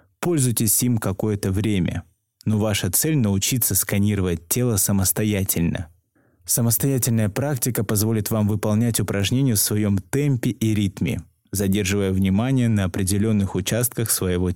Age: 20-39